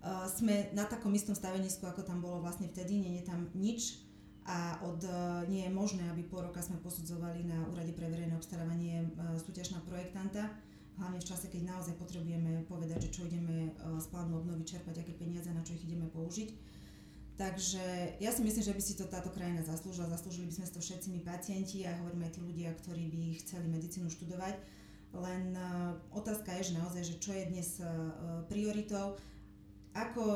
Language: Slovak